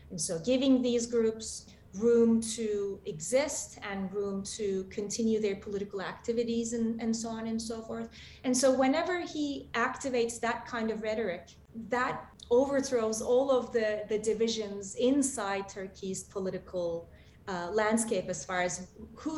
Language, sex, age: English, female, 20-39